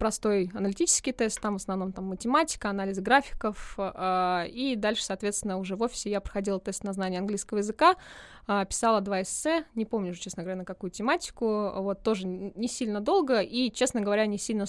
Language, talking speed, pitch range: Russian, 185 wpm, 180-220 Hz